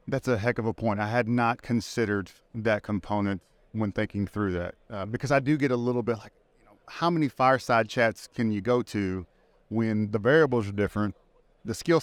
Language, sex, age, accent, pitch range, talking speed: English, male, 30-49, American, 110-140 Hz, 210 wpm